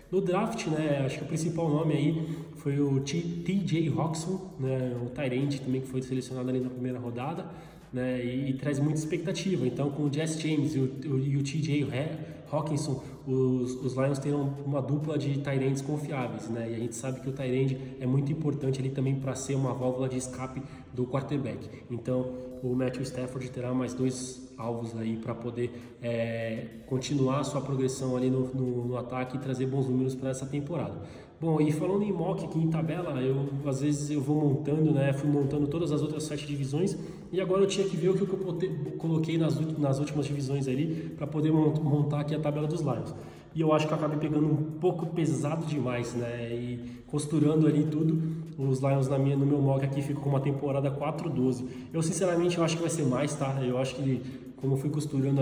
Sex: male